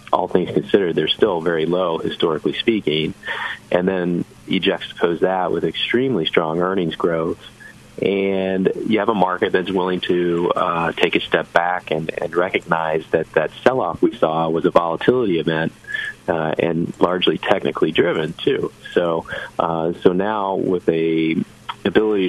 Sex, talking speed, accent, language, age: male, 155 wpm, American, English, 30-49